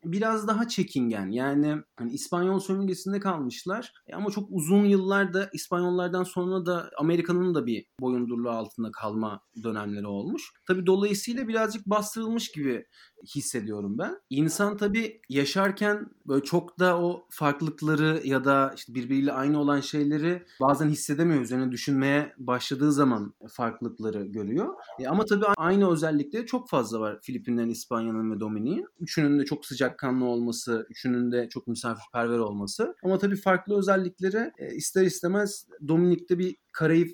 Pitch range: 125-180 Hz